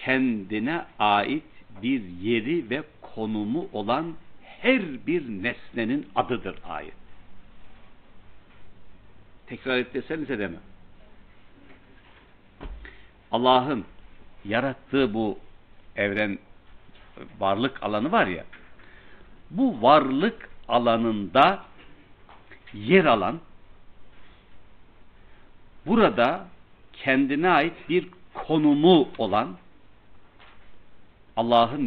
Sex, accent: male, native